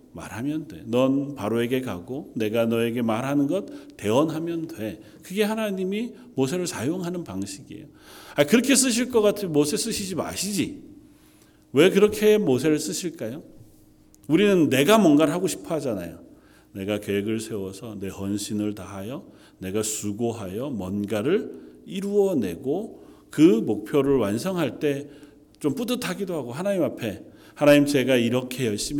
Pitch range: 110-180 Hz